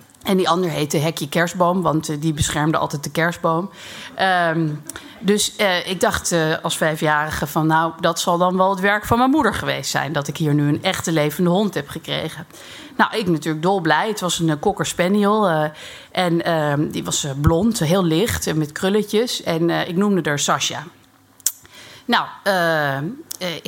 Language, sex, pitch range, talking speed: Dutch, female, 155-190 Hz, 190 wpm